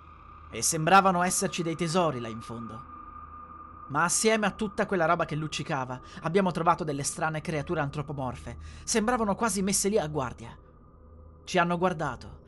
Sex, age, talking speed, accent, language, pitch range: male, 30-49, 150 wpm, native, Italian, 125-200 Hz